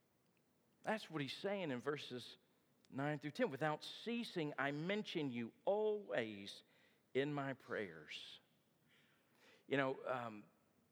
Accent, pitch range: American, 115-165 Hz